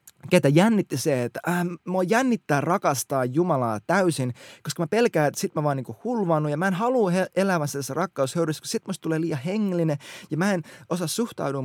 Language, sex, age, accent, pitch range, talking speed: Finnish, male, 20-39, native, 130-185 Hz, 185 wpm